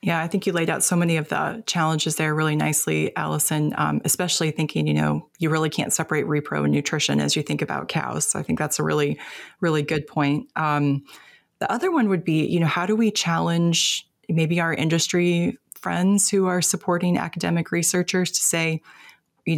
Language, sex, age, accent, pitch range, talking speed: English, female, 20-39, American, 150-170 Hz, 200 wpm